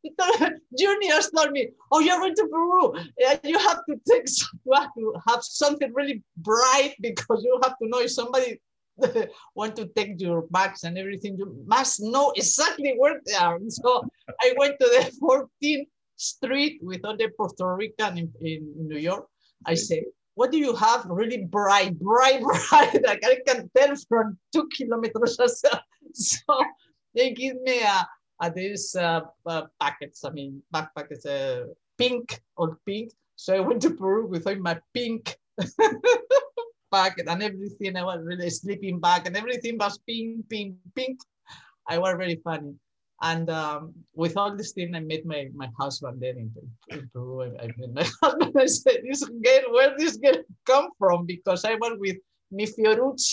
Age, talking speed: 50-69, 175 wpm